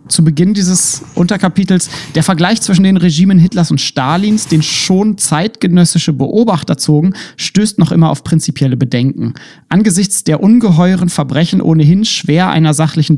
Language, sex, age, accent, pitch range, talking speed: German, male, 30-49, German, 145-185 Hz, 140 wpm